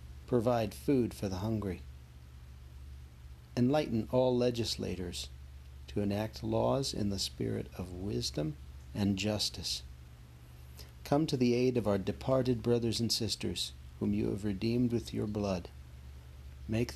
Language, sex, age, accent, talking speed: English, male, 60-79, American, 125 wpm